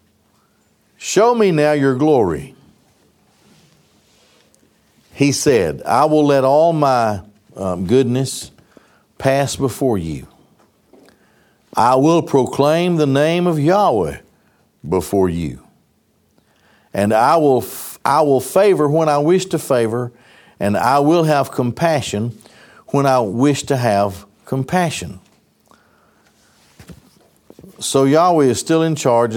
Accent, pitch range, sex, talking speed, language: American, 95-140 Hz, male, 110 wpm, English